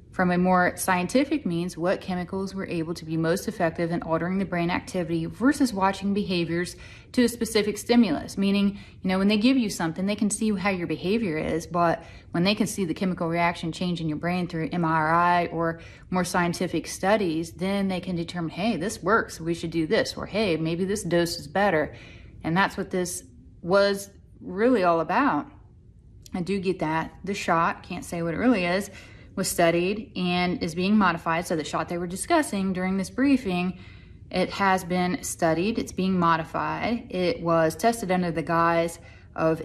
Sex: female